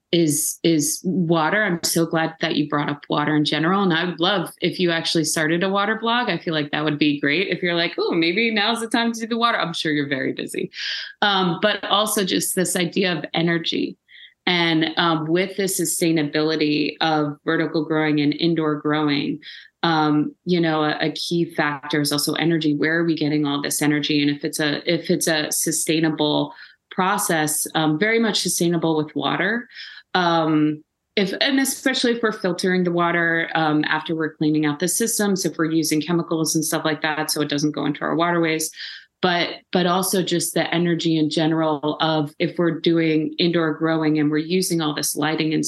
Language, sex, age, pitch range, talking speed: English, female, 30-49, 150-175 Hz, 200 wpm